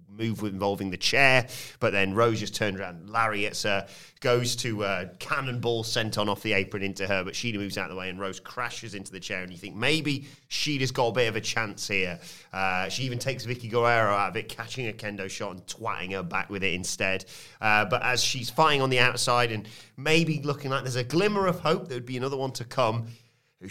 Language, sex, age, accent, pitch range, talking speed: English, male, 30-49, British, 100-130 Hz, 230 wpm